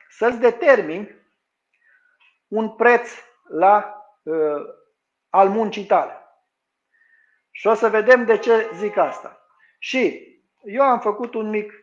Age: 50-69